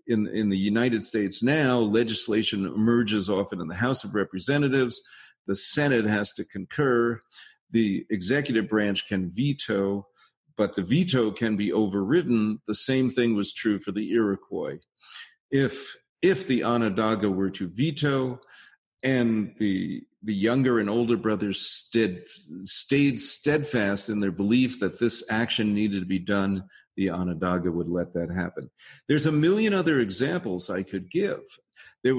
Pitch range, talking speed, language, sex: 100-135 Hz, 150 wpm, English, male